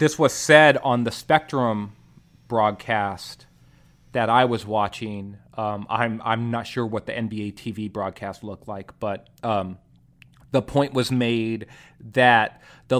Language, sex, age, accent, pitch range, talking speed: English, male, 30-49, American, 115-140 Hz, 145 wpm